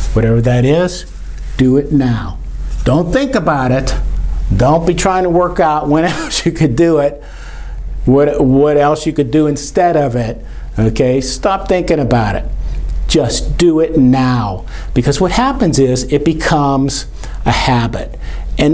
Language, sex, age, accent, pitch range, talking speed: English, male, 50-69, American, 110-150 Hz, 155 wpm